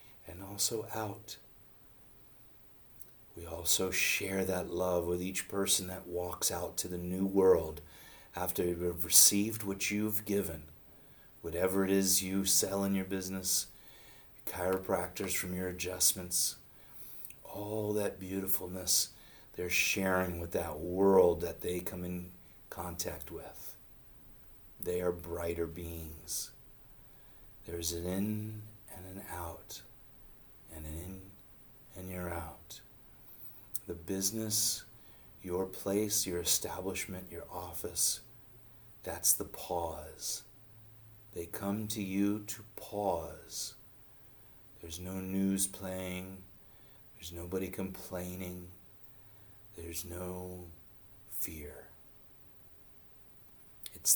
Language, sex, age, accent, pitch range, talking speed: English, male, 40-59, American, 90-105 Hz, 105 wpm